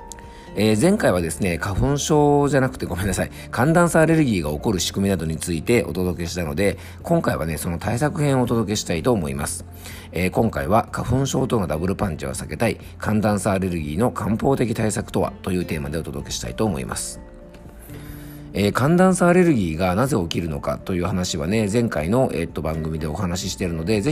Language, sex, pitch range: Japanese, male, 85-120 Hz